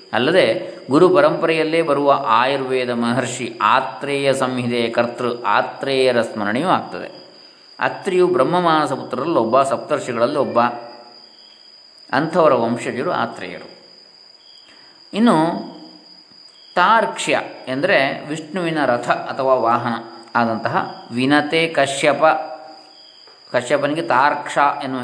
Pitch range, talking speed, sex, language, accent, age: 115-145 Hz, 80 wpm, male, Kannada, native, 20-39